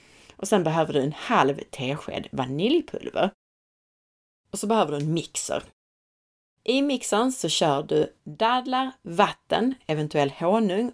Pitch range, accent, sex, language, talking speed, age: 145-220 Hz, native, female, Swedish, 125 wpm, 30-49